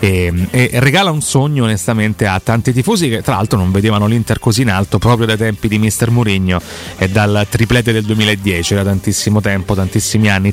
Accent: native